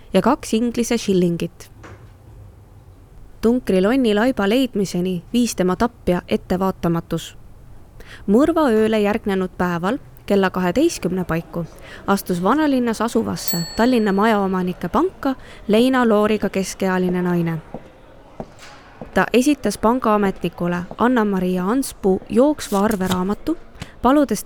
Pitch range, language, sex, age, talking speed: 180-235 Hz, English, female, 20-39, 90 wpm